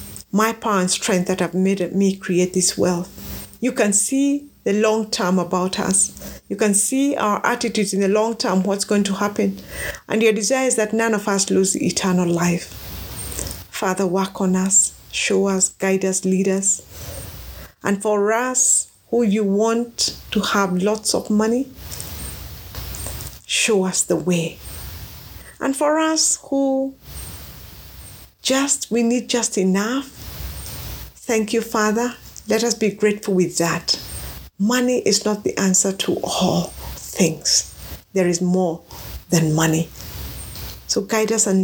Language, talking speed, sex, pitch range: English, 150 wpm, female, 180-220 Hz